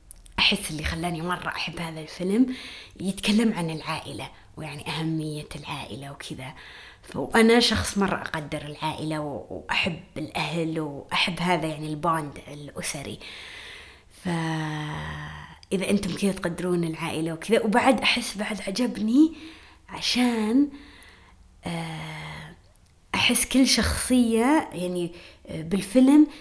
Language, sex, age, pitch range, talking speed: Arabic, female, 20-39, 155-210 Hz, 100 wpm